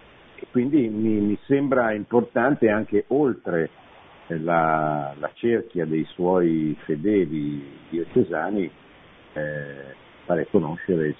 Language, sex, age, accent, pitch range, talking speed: Italian, male, 50-69, native, 85-120 Hz, 100 wpm